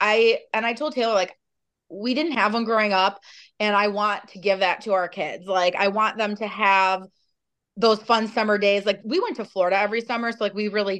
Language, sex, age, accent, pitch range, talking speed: English, female, 30-49, American, 190-230 Hz, 230 wpm